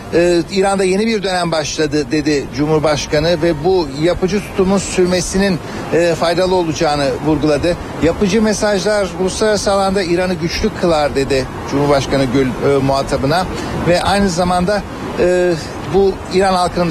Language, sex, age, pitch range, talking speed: Turkish, male, 60-79, 155-200 Hz, 130 wpm